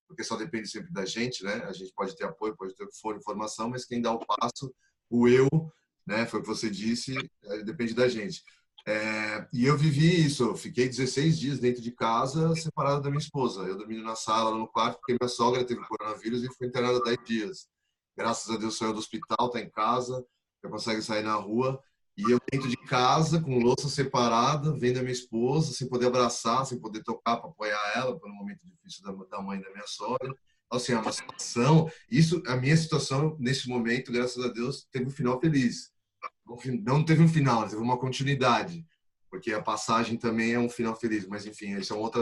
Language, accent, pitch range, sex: Portuguese, Brazilian, 110-135 Hz, male